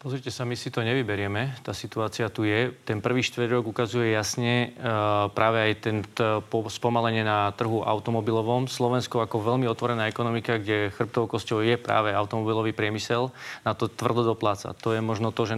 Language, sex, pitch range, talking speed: Slovak, male, 110-120 Hz, 165 wpm